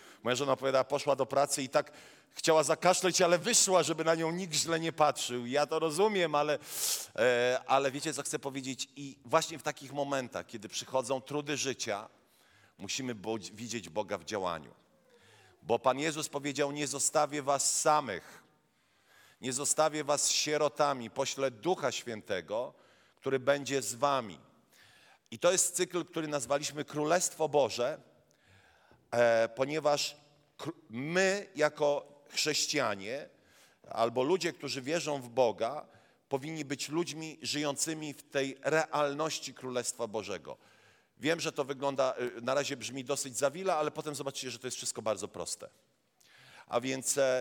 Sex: male